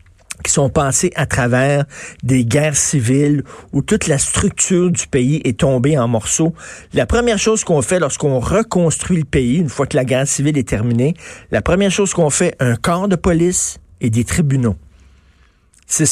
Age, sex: 50-69, male